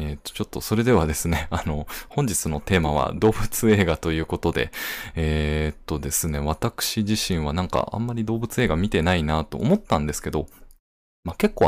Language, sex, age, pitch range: Japanese, male, 20-39, 80-110 Hz